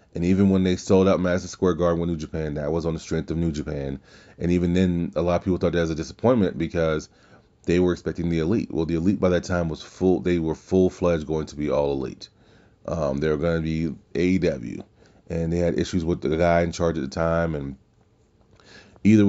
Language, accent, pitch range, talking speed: English, American, 85-95 Hz, 235 wpm